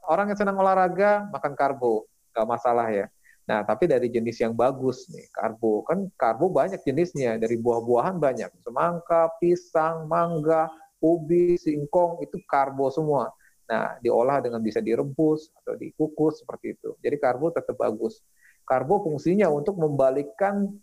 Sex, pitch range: male, 135-180 Hz